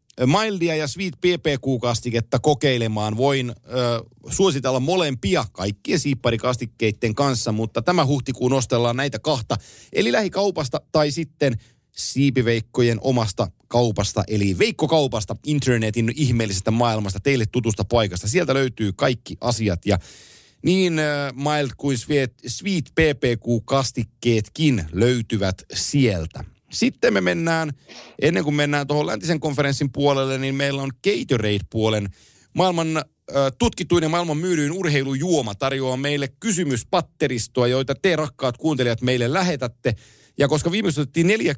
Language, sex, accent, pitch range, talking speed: Finnish, male, native, 115-155 Hz, 110 wpm